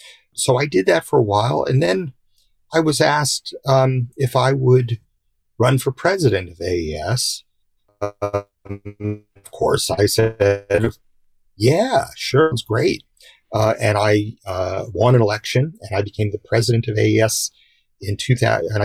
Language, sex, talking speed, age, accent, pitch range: English, male, 150 wpm, 40-59, American, 100-120 Hz